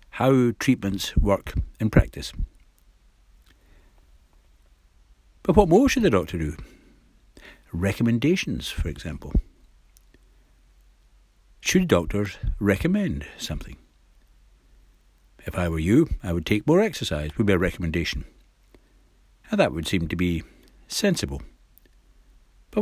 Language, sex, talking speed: English, male, 105 wpm